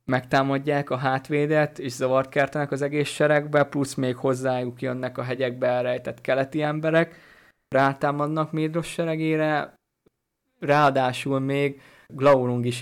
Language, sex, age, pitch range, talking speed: Hungarian, male, 20-39, 125-140 Hz, 110 wpm